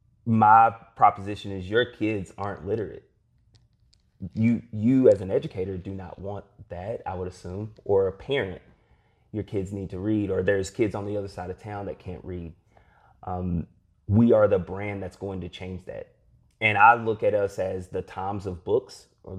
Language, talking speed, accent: English, 185 wpm, American